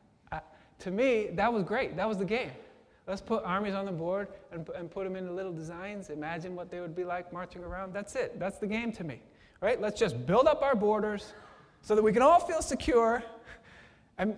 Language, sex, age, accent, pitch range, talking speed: English, male, 20-39, American, 145-195 Hz, 230 wpm